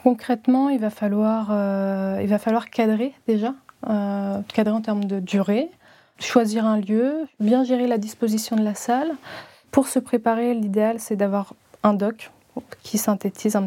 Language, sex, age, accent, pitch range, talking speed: French, female, 20-39, French, 200-230 Hz, 160 wpm